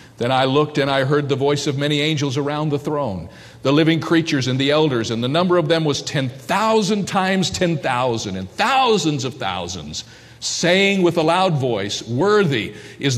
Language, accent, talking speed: English, American, 180 wpm